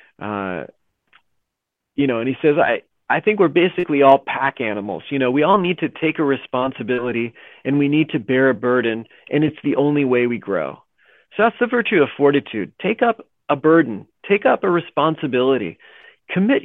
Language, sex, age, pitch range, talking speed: English, male, 40-59, 140-190 Hz, 185 wpm